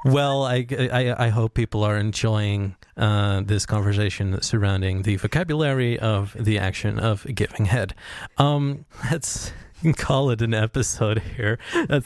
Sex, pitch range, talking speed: male, 105-130 Hz, 140 wpm